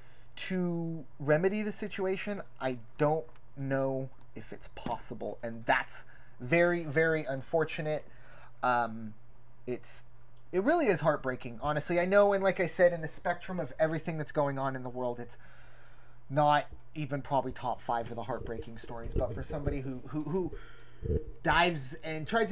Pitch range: 125-160 Hz